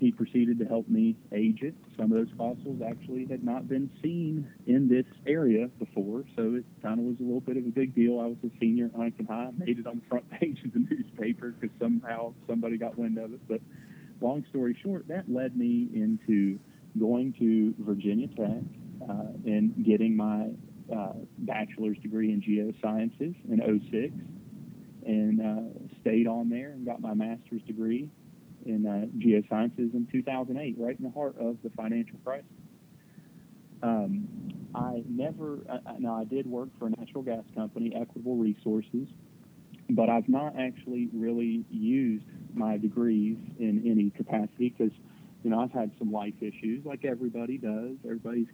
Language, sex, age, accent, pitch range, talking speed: English, male, 40-59, American, 110-145 Hz, 170 wpm